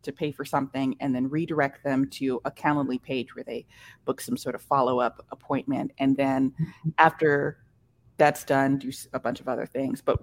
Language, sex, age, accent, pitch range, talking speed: English, female, 30-49, American, 135-165 Hz, 190 wpm